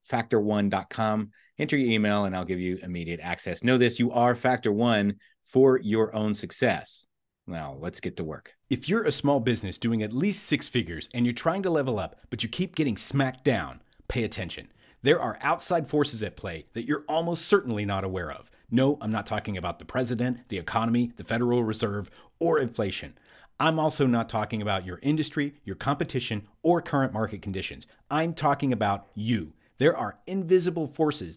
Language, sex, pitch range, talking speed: English, male, 110-165 Hz, 185 wpm